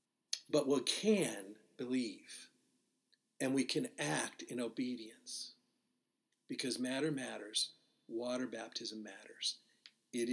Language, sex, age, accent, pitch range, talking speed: English, male, 50-69, American, 125-170 Hz, 100 wpm